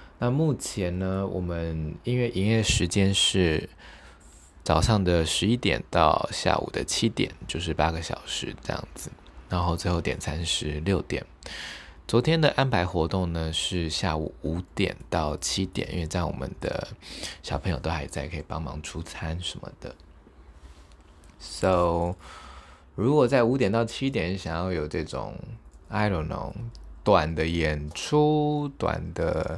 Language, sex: Chinese, male